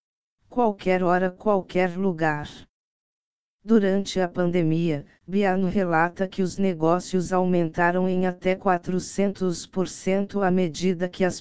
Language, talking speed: Portuguese, 105 wpm